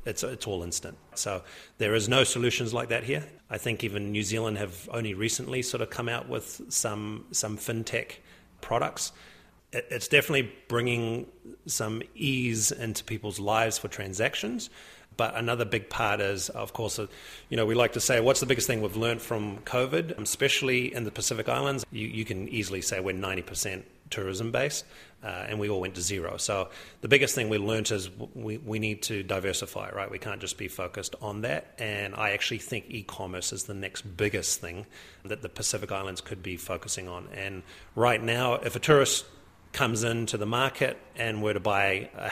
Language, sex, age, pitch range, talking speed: English, male, 30-49, 100-120 Hz, 190 wpm